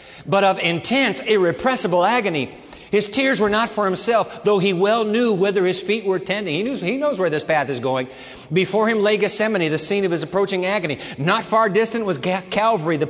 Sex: male